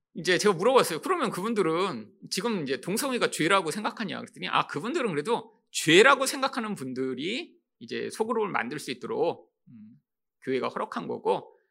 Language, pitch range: Korean, 200-330 Hz